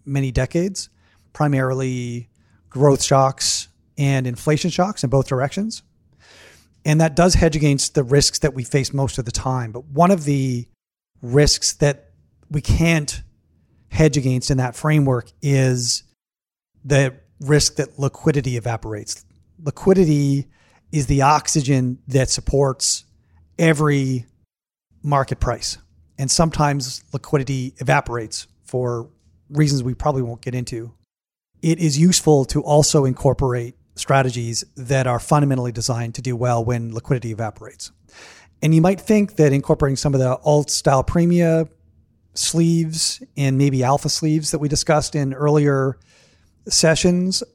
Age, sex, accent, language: 40-59, male, American, English